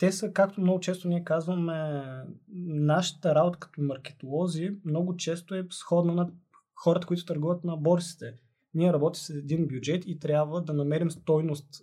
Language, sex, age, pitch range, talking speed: Bulgarian, male, 20-39, 140-170 Hz, 155 wpm